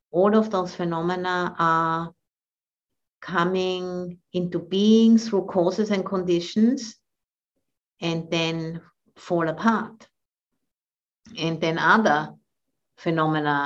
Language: English